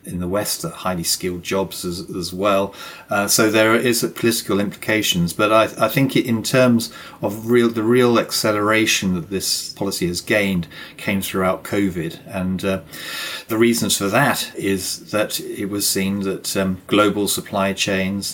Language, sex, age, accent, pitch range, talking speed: English, male, 40-59, British, 90-105 Hz, 170 wpm